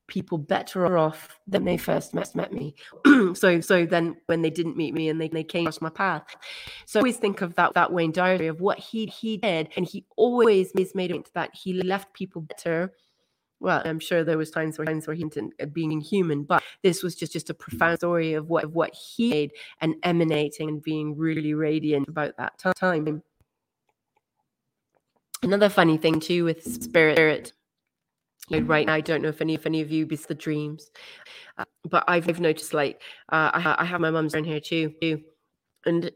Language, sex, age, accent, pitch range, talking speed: English, female, 30-49, British, 160-185 Hz, 200 wpm